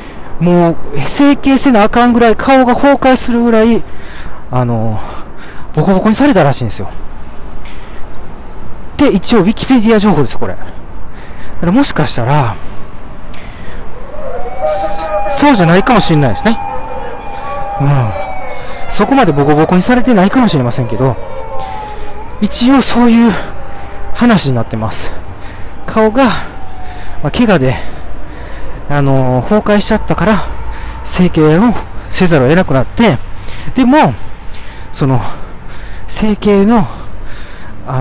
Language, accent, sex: Japanese, native, male